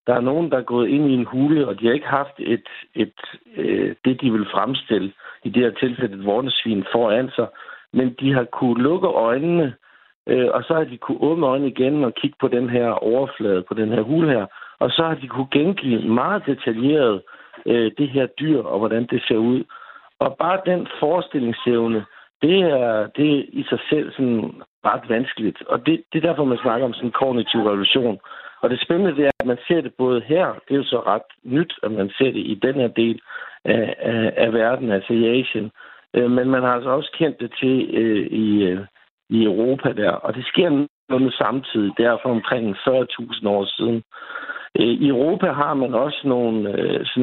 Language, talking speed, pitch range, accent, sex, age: Danish, 210 wpm, 115-135 Hz, native, male, 60-79